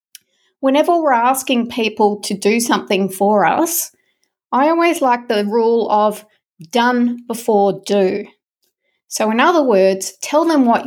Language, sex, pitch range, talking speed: English, female, 205-255 Hz, 140 wpm